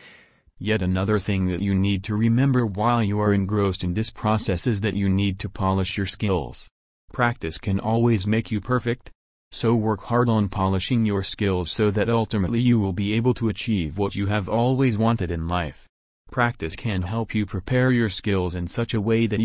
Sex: male